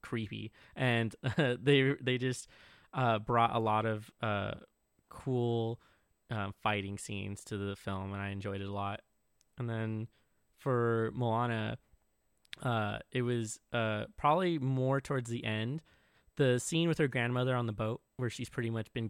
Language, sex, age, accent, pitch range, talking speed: English, male, 20-39, American, 105-125 Hz, 160 wpm